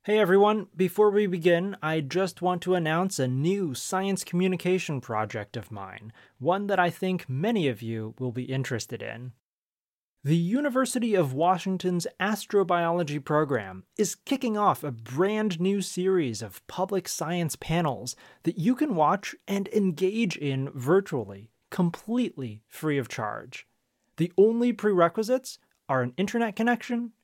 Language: English